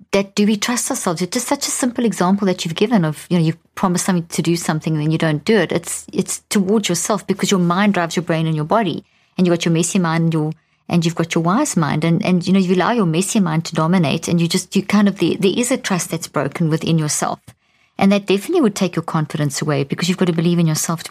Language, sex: English, female